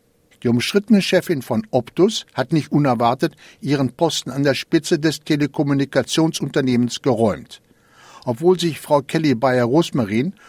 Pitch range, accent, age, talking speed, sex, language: 125-165 Hz, German, 60-79, 120 wpm, male, German